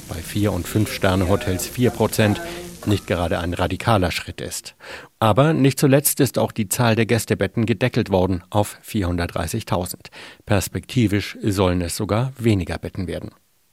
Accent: German